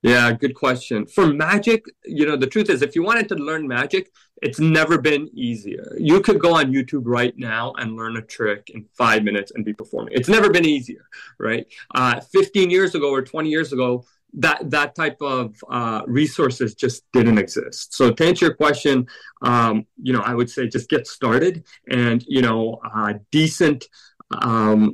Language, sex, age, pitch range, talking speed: English, male, 30-49, 120-160 Hz, 190 wpm